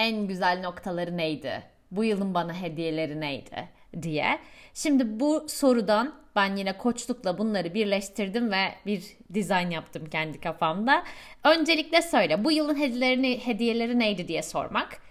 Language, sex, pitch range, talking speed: Turkish, female, 190-255 Hz, 135 wpm